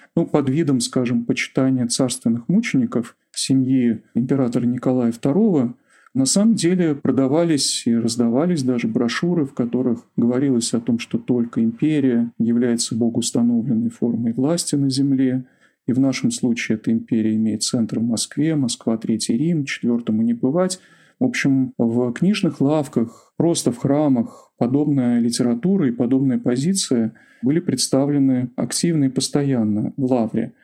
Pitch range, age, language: 120-155 Hz, 40-59, Russian